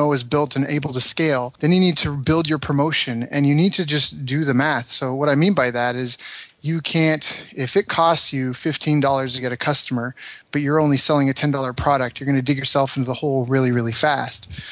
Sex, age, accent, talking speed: male, 30-49, American, 230 wpm